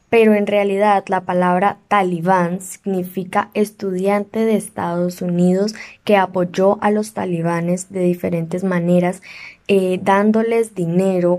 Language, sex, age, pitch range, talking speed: Spanish, female, 10-29, 180-210 Hz, 115 wpm